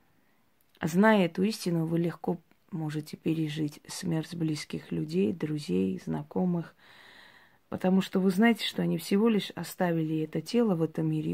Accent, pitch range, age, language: native, 155-190 Hz, 30-49, Russian